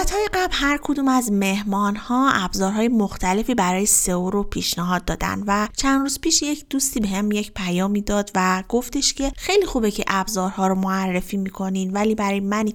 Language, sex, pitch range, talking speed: Persian, female, 190-245 Hz, 180 wpm